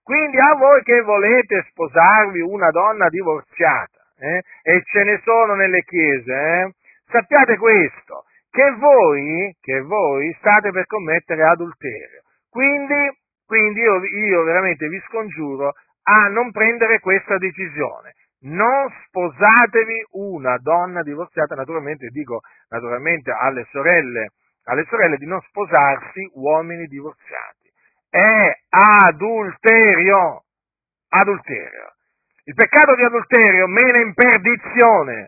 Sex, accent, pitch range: male, native, 160-225 Hz